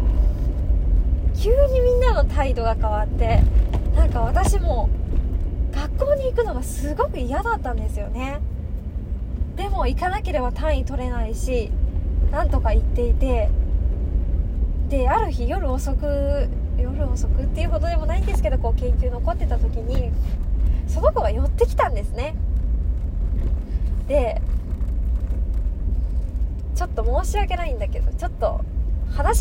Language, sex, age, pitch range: Japanese, female, 20-39, 70-85 Hz